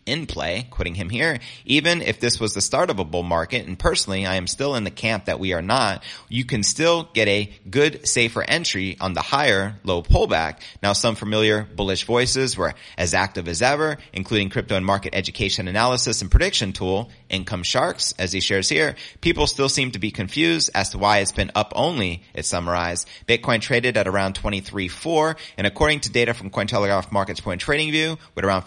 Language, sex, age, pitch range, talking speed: English, male, 30-49, 95-125 Hz, 205 wpm